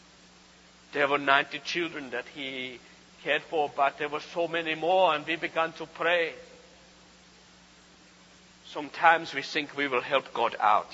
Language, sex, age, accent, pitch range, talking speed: English, male, 60-79, South African, 125-170 Hz, 150 wpm